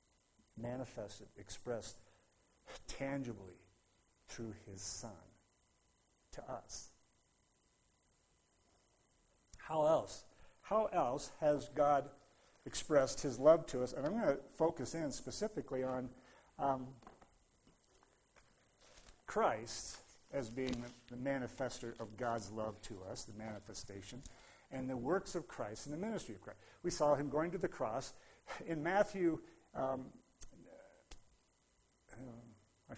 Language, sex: English, male